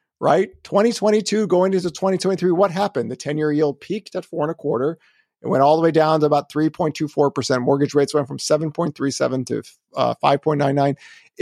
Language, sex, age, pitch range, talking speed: English, male, 50-69, 150-190 Hz, 180 wpm